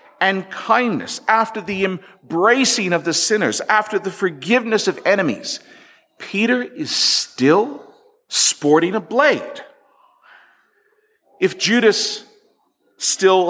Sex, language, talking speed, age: male, English, 100 wpm, 50-69